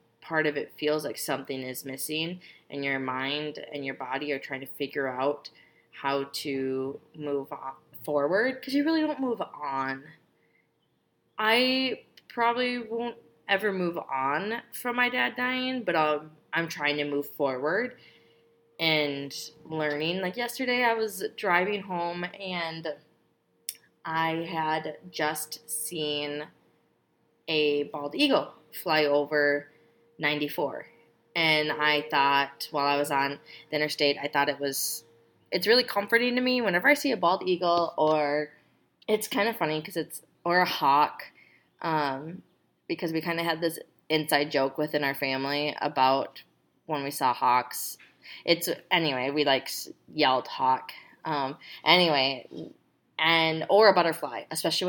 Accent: American